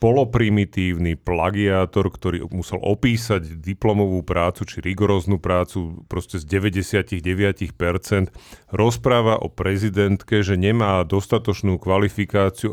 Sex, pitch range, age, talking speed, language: male, 95-115 Hz, 40-59, 95 wpm, Slovak